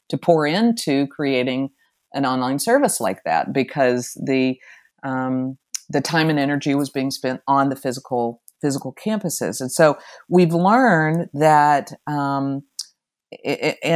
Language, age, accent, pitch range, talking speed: English, 50-69, American, 135-165 Hz, 135 wpm